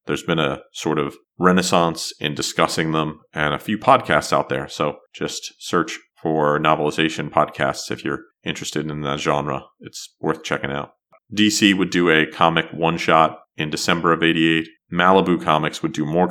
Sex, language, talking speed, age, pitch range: male, English, 170 wpm, 30-49, 80-90 Hz